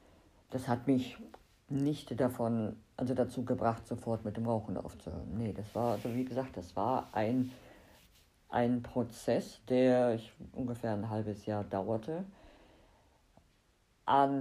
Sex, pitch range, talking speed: female, 110-130 Hz, 135 wpm